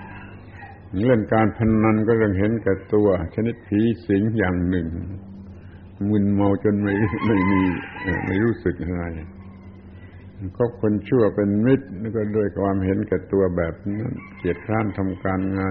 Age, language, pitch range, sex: 70-89, Thai, 100-115 Hz, male